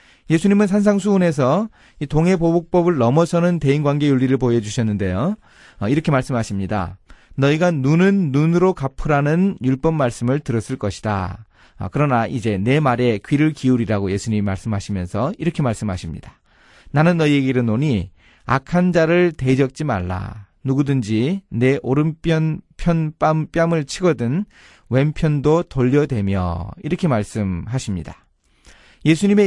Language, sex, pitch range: Korean, male, 115-170 Hz